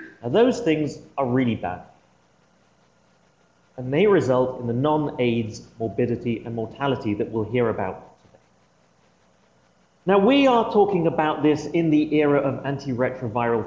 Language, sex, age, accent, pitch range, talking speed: English, male, 30-49, British, 115-150 Hz, 135 wpm